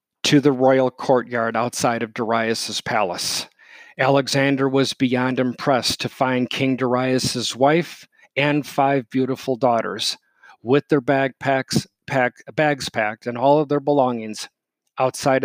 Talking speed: 120 wpm